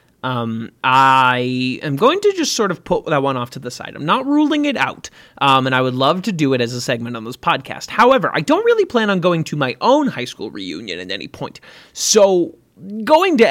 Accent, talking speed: American, 235 wpm